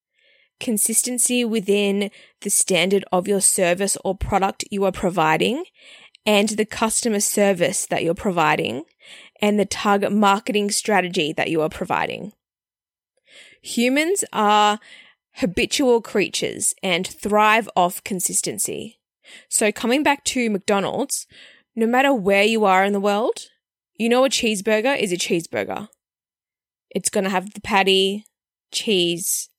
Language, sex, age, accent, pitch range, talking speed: English, female, 20-39, Australian, 200-240 Hz, 125 wpm